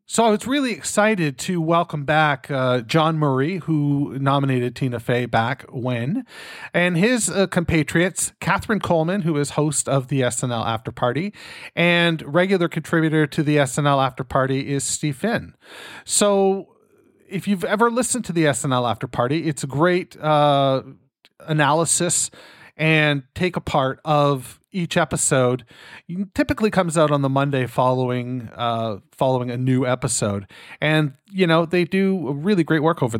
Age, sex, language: 40-59, male, English